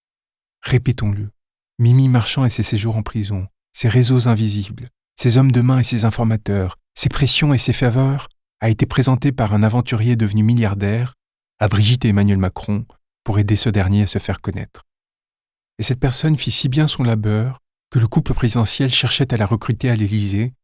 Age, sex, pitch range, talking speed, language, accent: 40-59, male, 100-120 Hz, 180 wpm, French, French